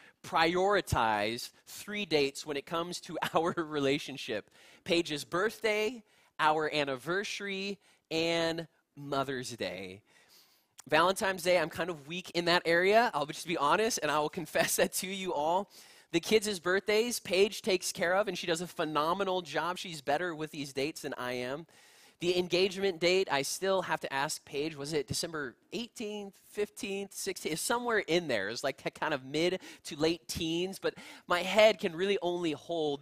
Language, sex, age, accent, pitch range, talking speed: English, male, 20-39, American, 150-195 Hz, 170 wpm